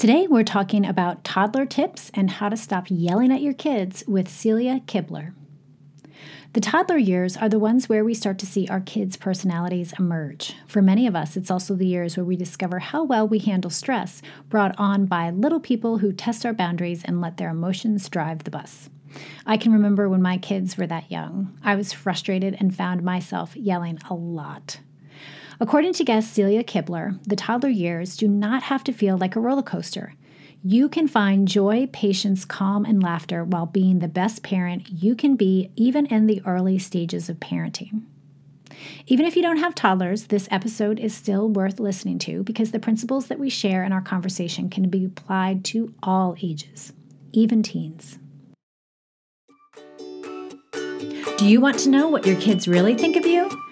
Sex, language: female, English